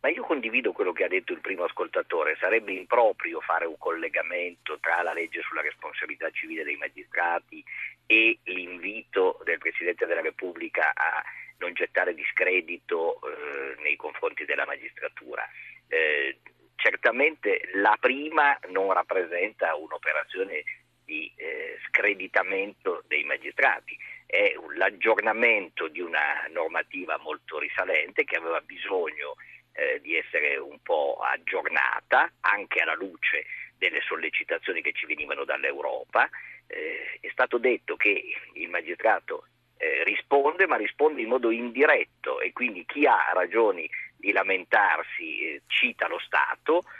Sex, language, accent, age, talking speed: male, Italian, native, 50-69, 125 wpm